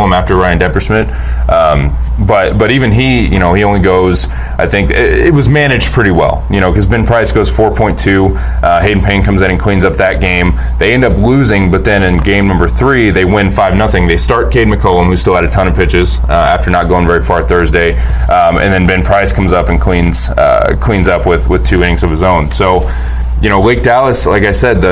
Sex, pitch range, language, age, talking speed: male, 85-105 Hz, English, 20-39, 240 wpm